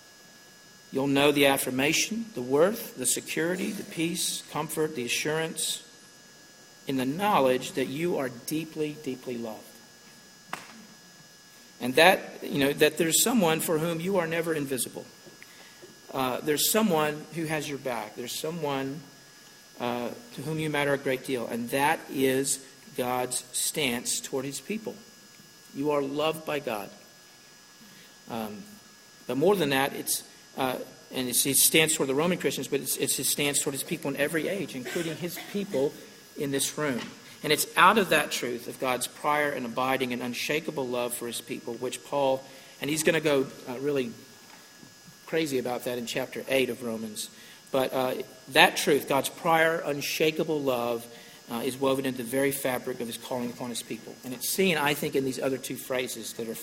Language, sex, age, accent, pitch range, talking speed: English, male, 50-69, American, 125-155 Hz, 175 wpm